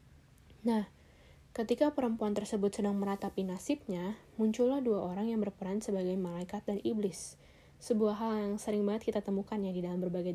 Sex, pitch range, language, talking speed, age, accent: female, 185-220 Hz, Indonesian, 155 wpm, 10-29, native